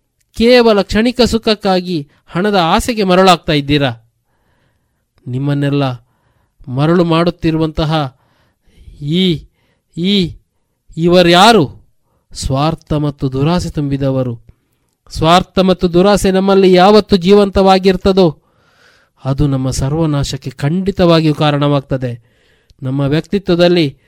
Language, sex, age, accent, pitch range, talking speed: Kannada, male, 20-39, native, 130-180 Hz, 75 wpm